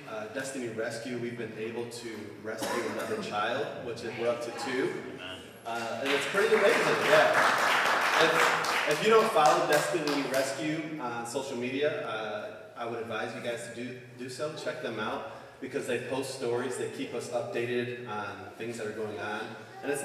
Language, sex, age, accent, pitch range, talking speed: English, male, 30-49, American, 115-145 Hz, 185 wpm